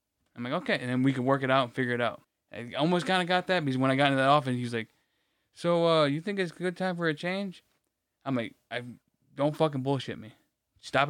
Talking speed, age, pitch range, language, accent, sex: 265 wpm, 20-39, 120-145 Hz, English, American, male